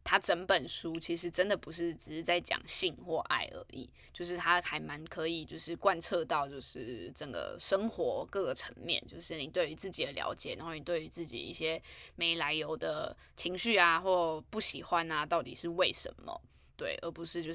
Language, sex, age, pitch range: Chinese, female, 20-39, 165-195 Hz